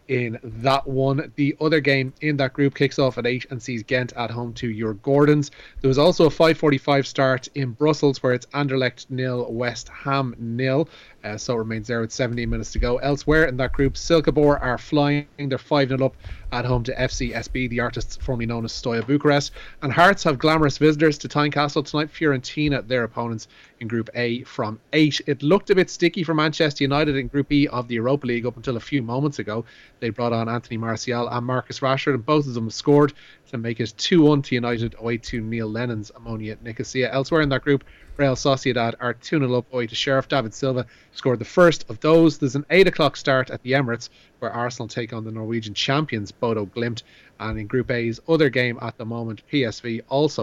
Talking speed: 210 wpm